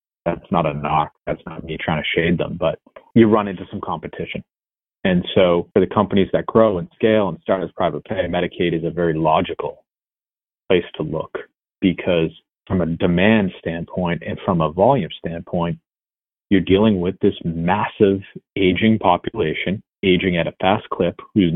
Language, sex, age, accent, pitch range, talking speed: English, male, 30-49, American, 85-100 Hz, 175 wpm